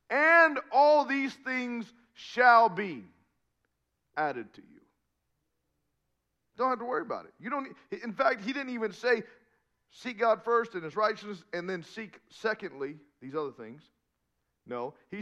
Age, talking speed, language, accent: 40-59, 155 wpm, English, American